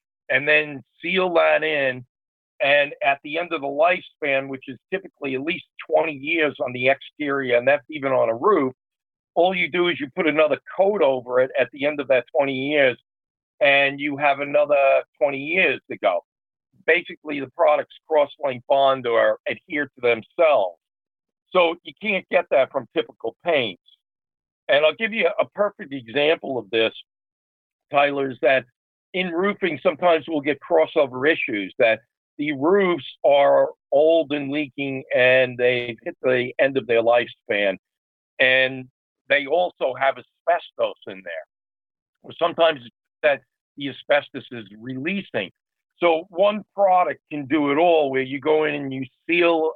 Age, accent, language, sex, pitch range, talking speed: 50-69, American, English, male, 130-165 Hz, 160 wpm